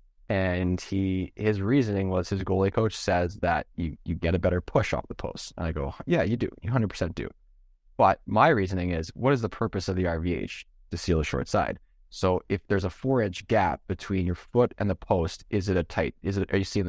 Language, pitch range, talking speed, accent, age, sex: English, 85-100 Hz, 235 wpm, American, 20-39, male